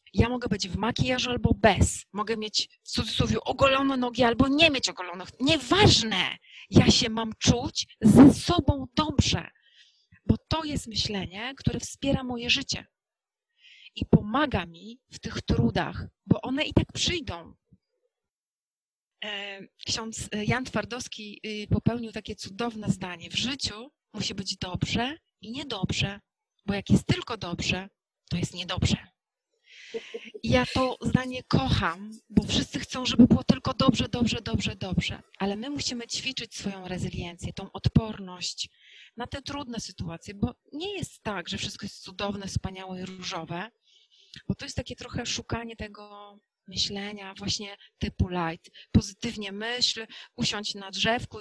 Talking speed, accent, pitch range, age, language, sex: 140 wpm, native, 195-250 Hz, 30-49, Polish, female